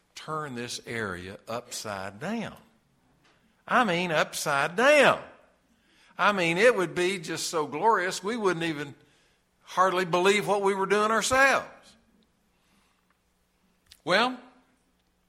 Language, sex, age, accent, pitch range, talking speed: English, male, 60-79, American, 120-195 Hz, 110 wpm